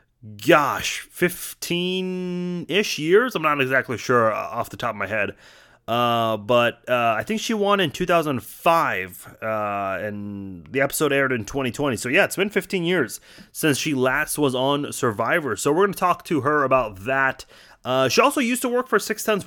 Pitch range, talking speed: 120-165 Hz, 180 wpm